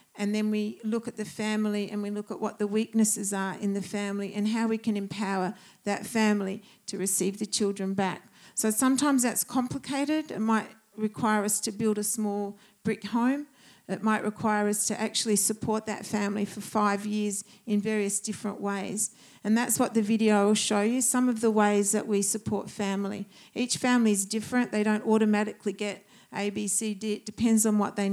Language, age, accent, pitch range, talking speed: English, 50-69, Australian, 200-220 Hz, 200 wpm